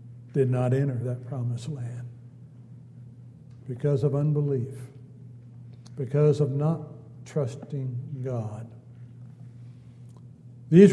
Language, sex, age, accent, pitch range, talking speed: English, male, 60-79, American, 125-145 Hz, 80 wpm